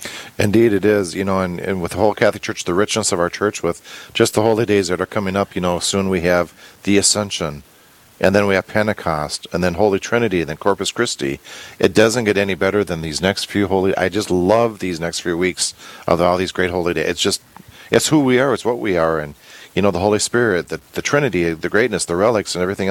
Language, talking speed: English, 245 wpm